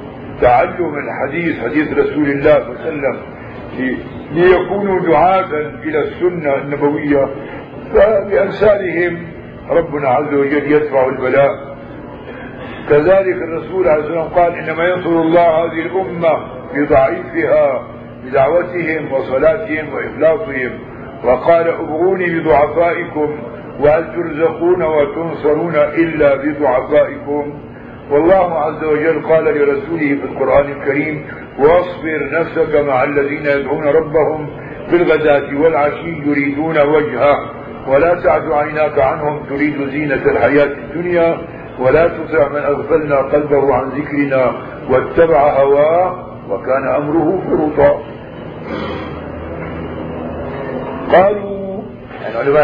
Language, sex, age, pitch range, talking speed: Arabic, male, 50-69, 140-165 Hz, 95 wpm